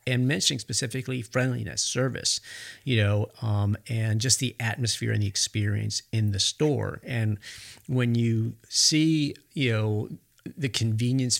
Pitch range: 105-130 Hz